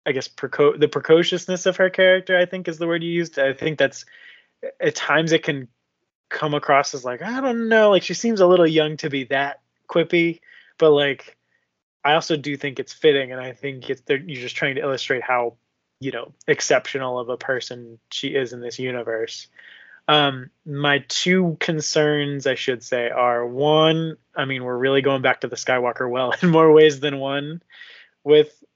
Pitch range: 130-160 Hz